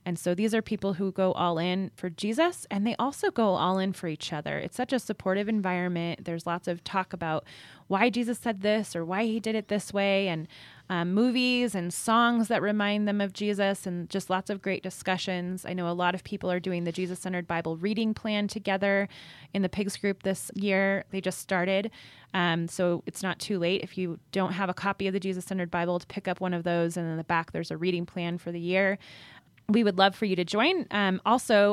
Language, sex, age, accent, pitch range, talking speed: English, female, 20-39, American, 170-200 Hz, 230 wpm